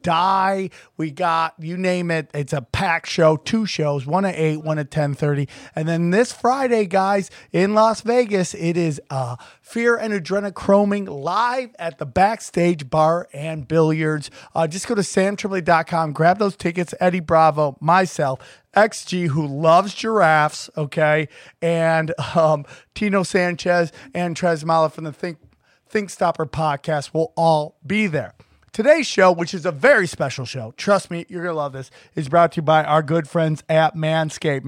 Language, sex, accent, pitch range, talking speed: English, male, American, 150-185 Hz, 170 wpm